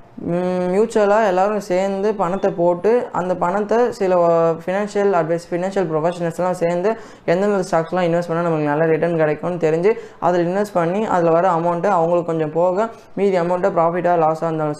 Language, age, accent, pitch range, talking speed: Tamil, 20-39, native, 165-195 Hz, 145 wpm